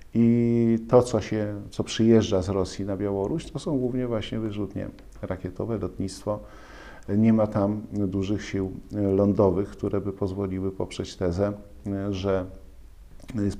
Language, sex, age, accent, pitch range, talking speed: Polish, male, 50-69, native, 105-130 Hz, 130 wpm